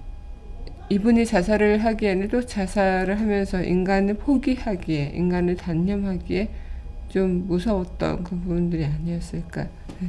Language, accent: Korean, native